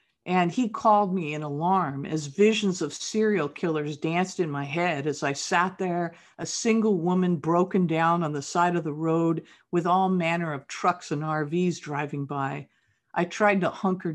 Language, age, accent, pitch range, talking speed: English, 50-69, American, 155-195 Hz, 180 wpm